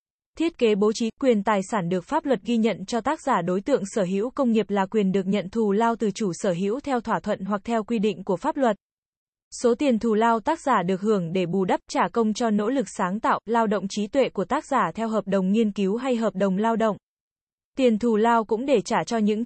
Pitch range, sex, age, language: 200-240 Hz, female, 20-39, Vietnamese